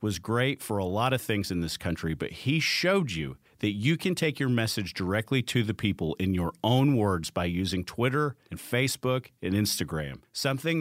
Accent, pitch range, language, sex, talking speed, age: American, 100-130 Hz, English, male, 200 wpm, 40-59